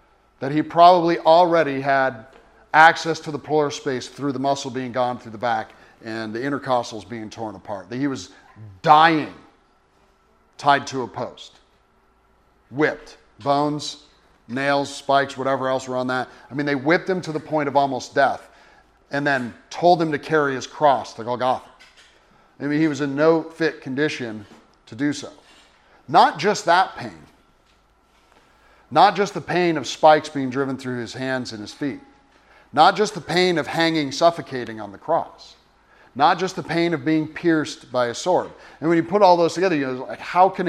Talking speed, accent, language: 180 wpm, American, English